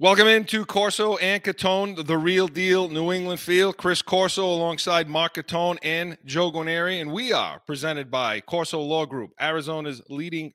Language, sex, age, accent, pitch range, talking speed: English, male, 30-49, American, 140-170 Hz, 165 wpm